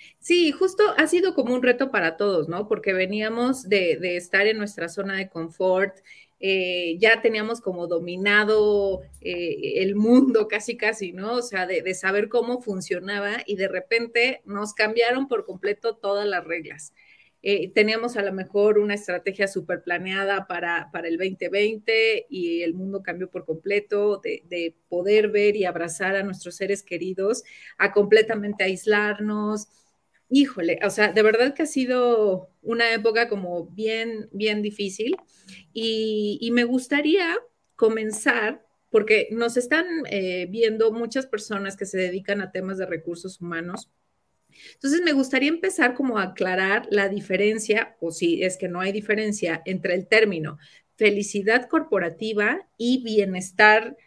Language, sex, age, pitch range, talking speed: Spanish, female, 30-49, 190-235 Hz, 150 wpm